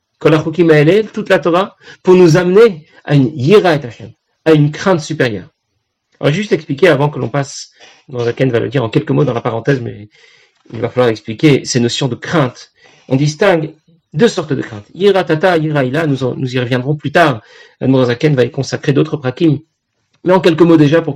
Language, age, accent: French, 40-59, French